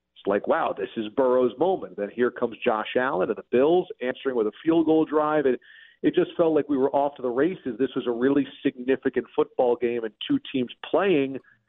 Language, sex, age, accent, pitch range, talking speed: English, male, 40-59, American, 110-135 Hz, 220 wpm